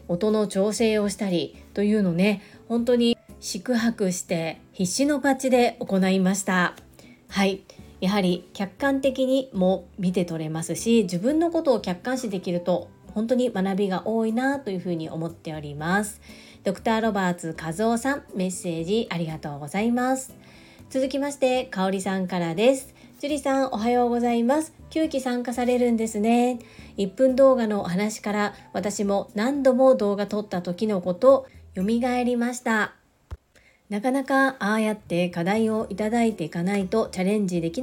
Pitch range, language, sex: 190-250 Hz, Japanese, female